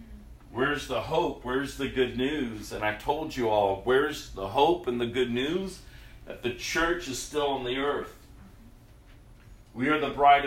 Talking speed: 180 wpm